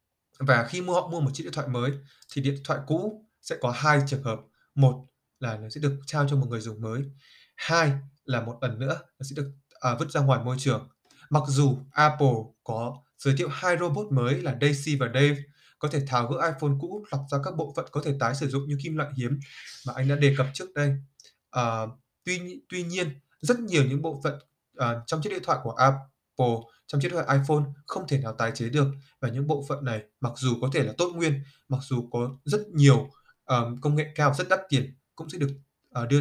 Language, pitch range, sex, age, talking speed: Vietnamese, 125-145 Hz, male, 20-39, 225 wpm